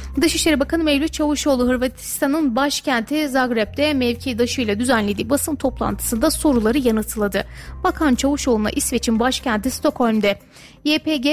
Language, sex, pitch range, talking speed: Turkish, female, 225-290 Hz, 105 wpm